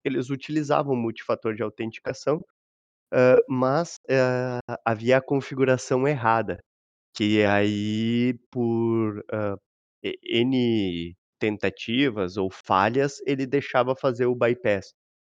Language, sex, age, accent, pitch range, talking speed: Portuguese, male, 20-39, Brazilian, 100-130 Hz, 100 wpm